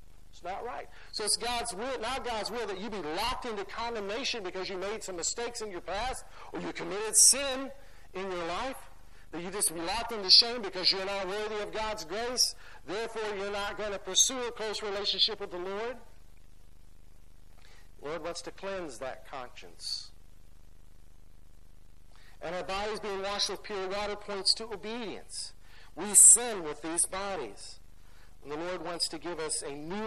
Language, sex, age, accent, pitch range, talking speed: English, male, 50-69, American, 135-215 Hz, 175 wpm